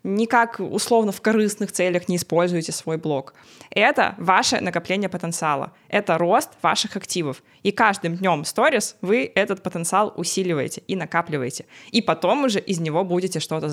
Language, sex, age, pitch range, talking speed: Russian, female, 20-39, 170-215 Hz, 150 wpm